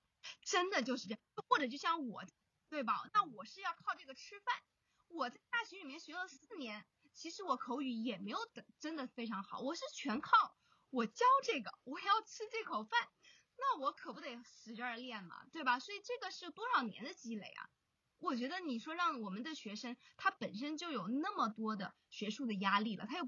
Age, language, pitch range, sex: 20-39, Chinese, 220-320 Hz, female